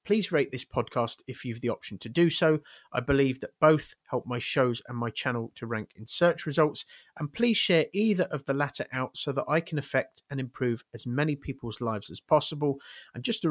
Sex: male